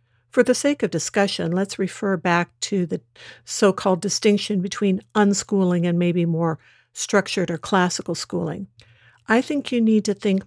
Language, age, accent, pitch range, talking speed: English, 60-79, American, 180-215 Hz, 155 wpm